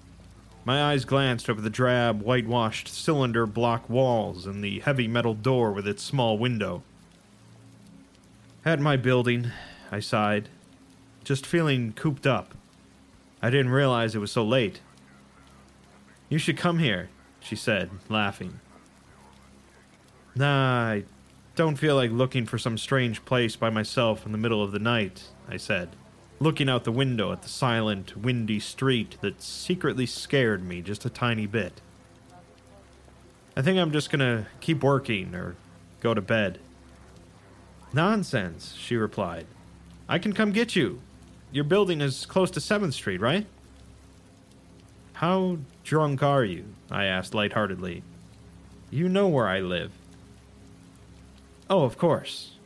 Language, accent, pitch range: English, American, 90-130 Hz